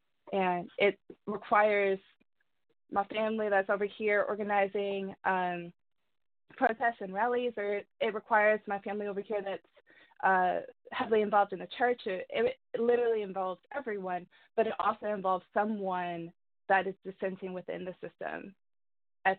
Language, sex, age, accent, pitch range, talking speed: English, female, 20-39, American, 185-225 Hz, 140 wpm